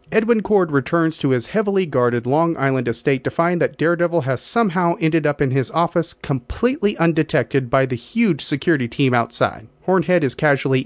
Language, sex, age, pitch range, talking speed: English, male, 40-59, 130-170 Hz, 175 wpm